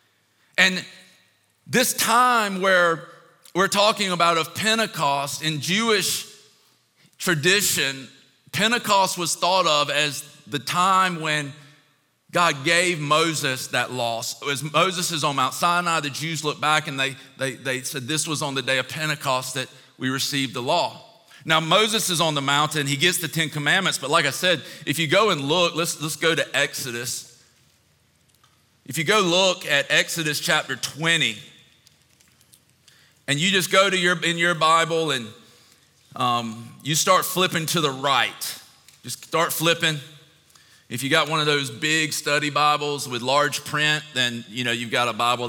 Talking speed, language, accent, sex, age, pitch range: 165 wpm, English, American, male, 40-59, 130-170 Hz